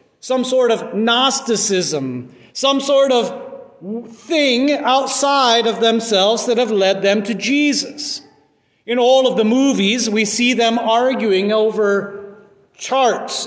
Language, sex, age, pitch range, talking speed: English, male, 40-59, 200-265 Hz, 125 wpm